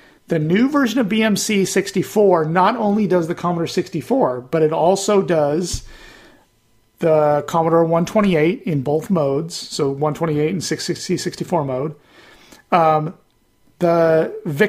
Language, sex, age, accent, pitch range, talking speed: English, male, 40-59, American, 160-195 Hz, 100 wpm